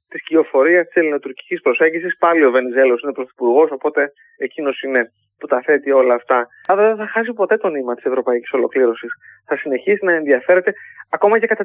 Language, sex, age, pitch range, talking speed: Greek, male, 30-49, 140-220 Hz, 180 wpm